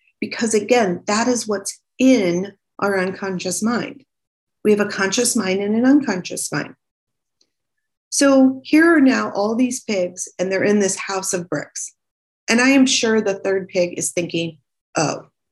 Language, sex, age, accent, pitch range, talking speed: English, female, 40-59, American, 180-235 Hz, 160 wpm